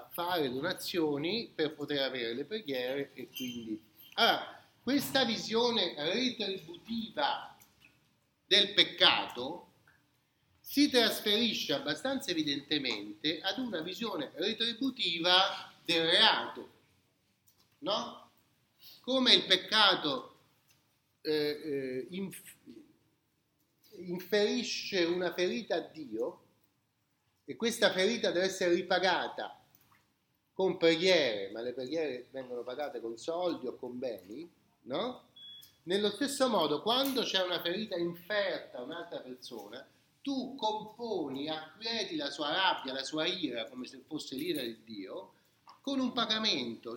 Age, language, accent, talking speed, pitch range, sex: 40-59, Italian, native, 105 wpm, 140-230 Hz, male